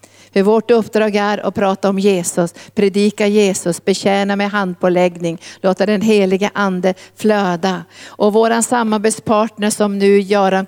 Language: Swedish